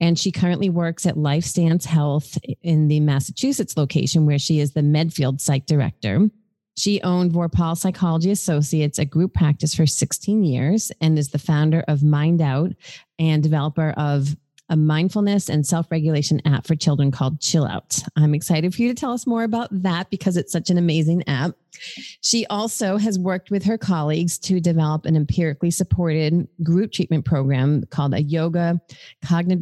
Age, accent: 30-49, American